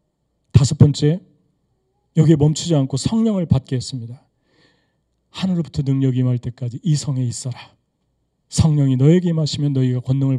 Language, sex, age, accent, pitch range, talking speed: English, male, 40-59, Korean, 125-160 Hz, 115 wpm